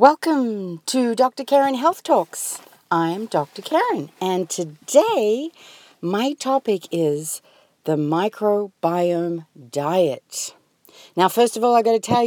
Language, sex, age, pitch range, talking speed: English, female, 50-69, 160-215 Hz, 120 wpm